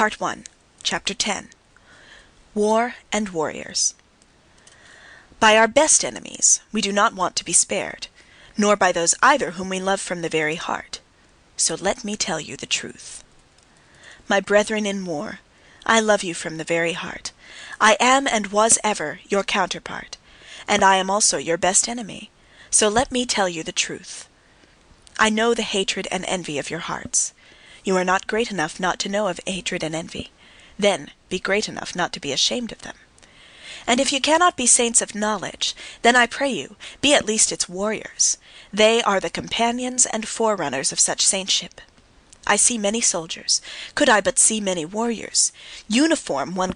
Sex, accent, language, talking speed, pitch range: female, American, English, 175 wpm, 185-225 Hz